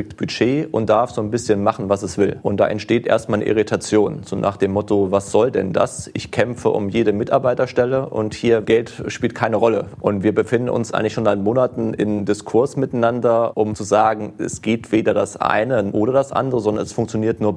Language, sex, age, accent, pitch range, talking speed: German, male, 30-49, German, 105-120 Hz, 210 wpm